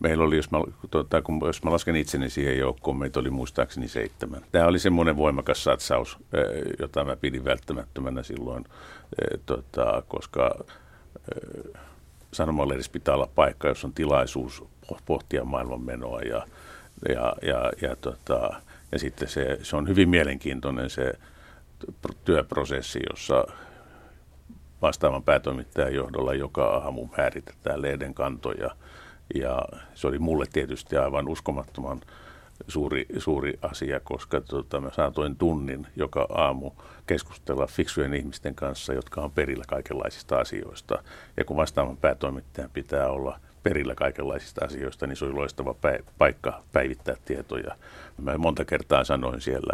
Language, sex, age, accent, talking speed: Finnish, male, 50-69, native, 125 wpm